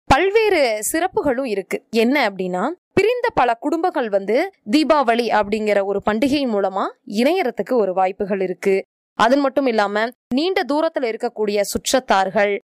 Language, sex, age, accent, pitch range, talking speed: Tamil, female, 20-39, native, 215-295 Hz, 110 wpm